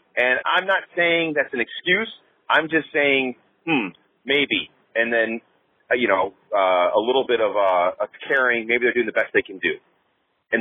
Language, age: English, 30-49